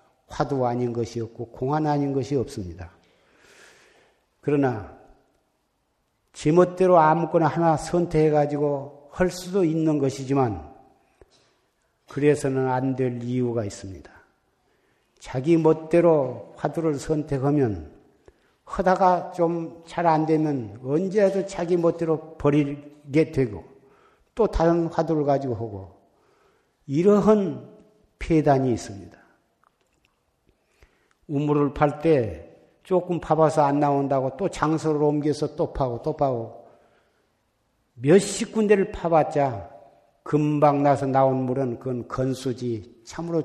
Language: Korean